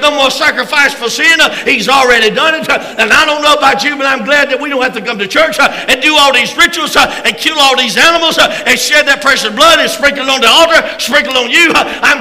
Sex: male